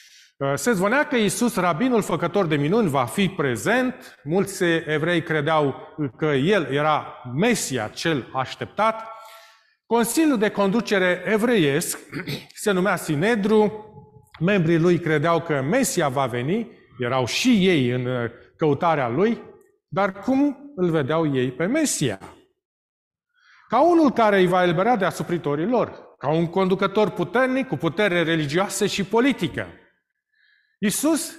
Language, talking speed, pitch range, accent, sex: Romanian, 125 wpm, 145-215 Hz, native, male